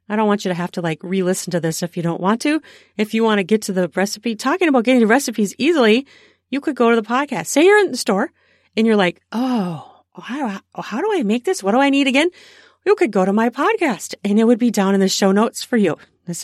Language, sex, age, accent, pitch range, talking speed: English, female, 40-59, American, 180-265 Hz, 280 wpm